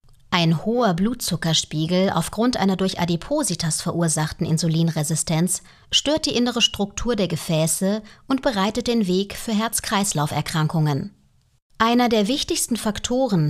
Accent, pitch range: German, 165-235 Hz